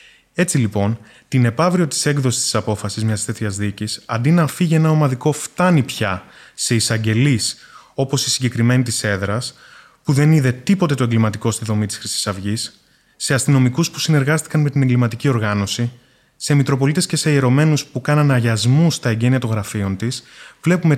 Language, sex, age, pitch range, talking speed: Greek, male, 20-39, 110-140 Hz, 165 wpm